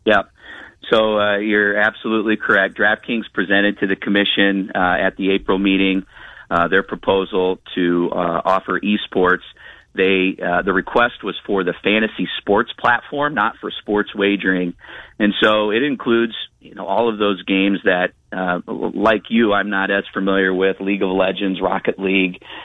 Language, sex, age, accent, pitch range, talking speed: English, male, 40-59, American, 95-105 Hz, 160 wpm